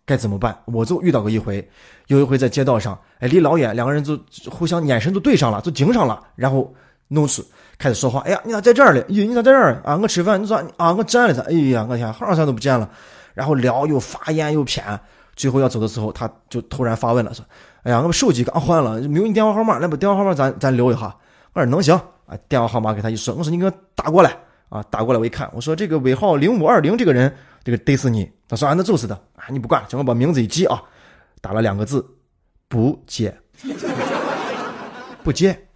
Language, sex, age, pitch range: Chinese, male, 20-39, 120-180 Hz